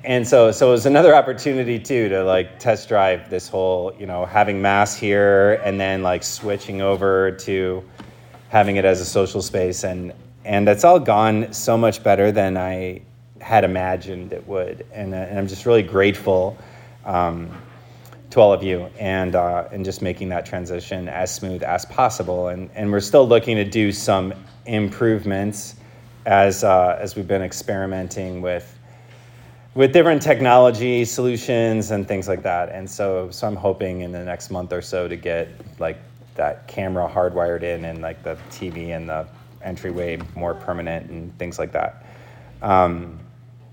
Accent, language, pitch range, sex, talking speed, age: American, English, 95-120 Hz, male, 170 wpm, 30-49